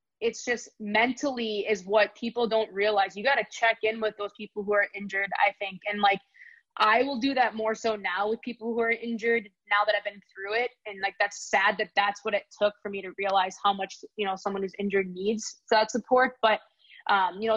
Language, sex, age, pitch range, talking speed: English, female, 20-39, 200-230 Hz, 230 wpm